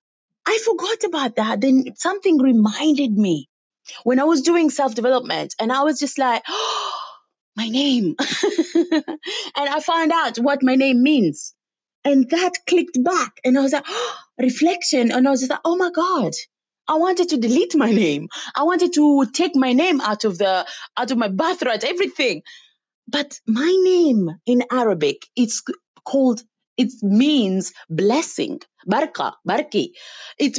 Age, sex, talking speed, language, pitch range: 30-49, female, 155 wpm, English, 250-340 Hz